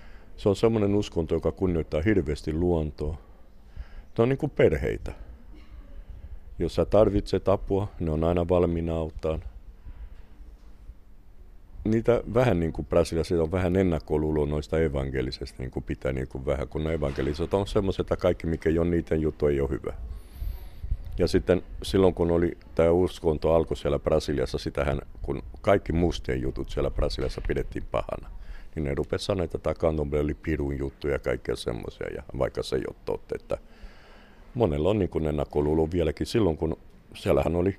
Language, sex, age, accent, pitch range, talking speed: Finnish, male, 50-69, native, 75-90 Hz, 150 wpm